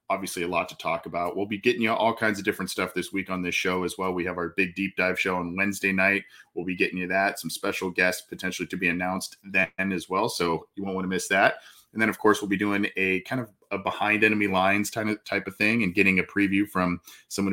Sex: male